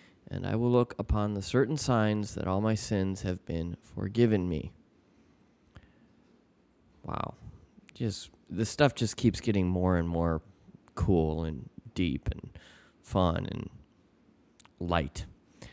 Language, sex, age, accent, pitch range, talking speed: English, male, 20-39, American, 90-110 Hz, 125 wpm